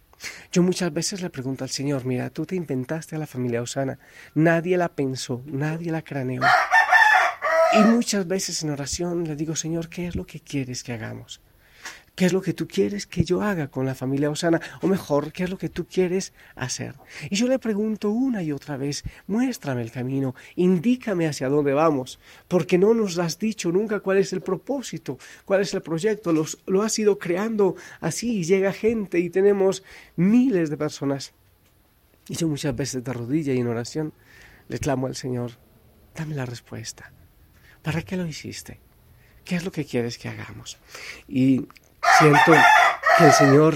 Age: 40-59